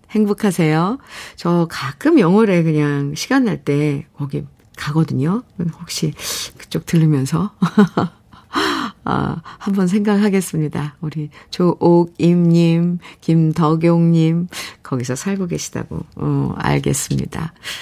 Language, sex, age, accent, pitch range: Korean, female, 50-69, native, 165-250 Hz